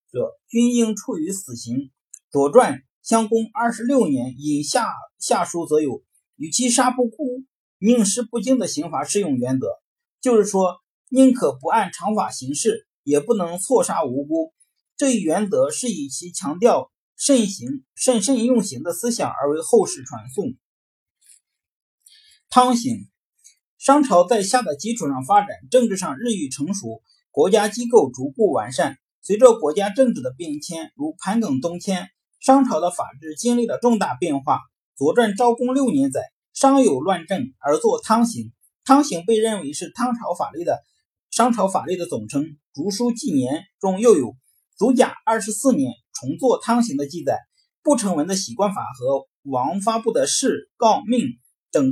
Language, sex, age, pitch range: Chinese, male, 50-69, 190-265 Hz